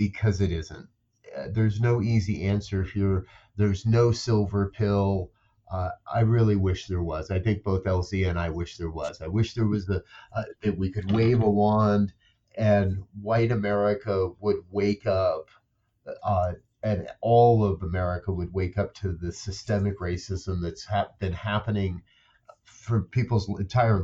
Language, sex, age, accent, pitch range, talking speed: English, male, 40-59, American, 95-110 Hz, 165 wpm